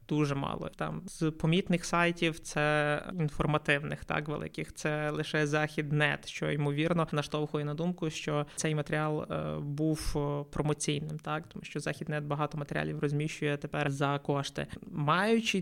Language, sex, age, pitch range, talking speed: Ukrainian, male, 20-39, 145-175 Hz, 140 wpm